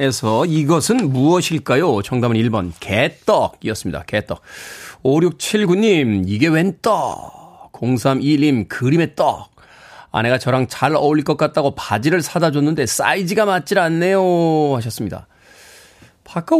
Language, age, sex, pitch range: Korean, 40-59, male, 115-170 Hz